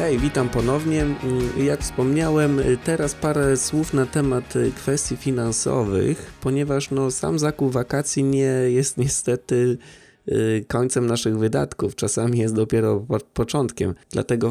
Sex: male